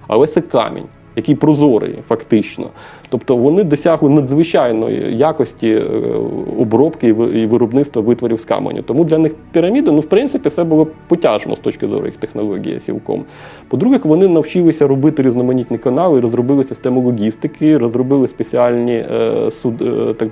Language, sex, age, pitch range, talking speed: Ukrainian, male, 30-49, 125-150 Hz, 135 wpm